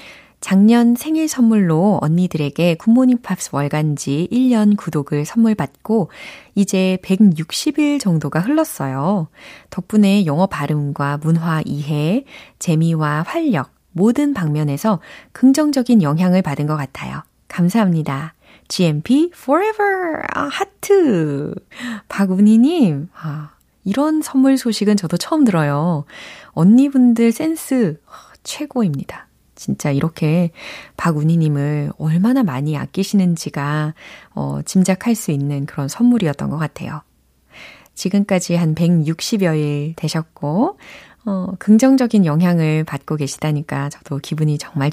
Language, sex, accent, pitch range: Korean, female, native, 150-230 Hz